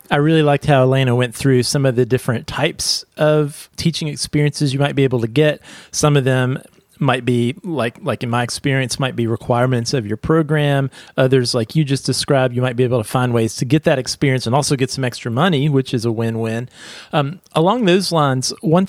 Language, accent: English, American